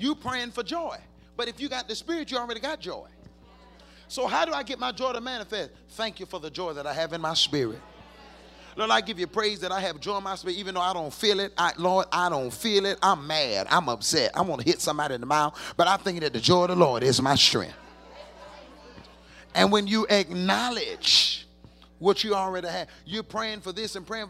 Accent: American